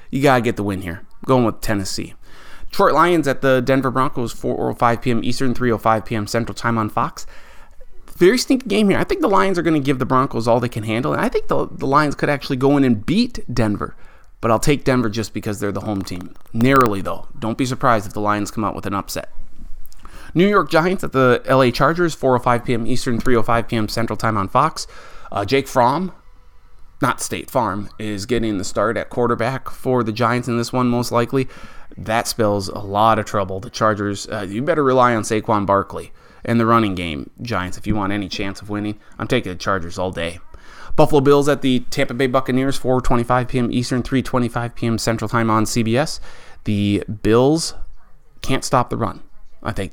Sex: male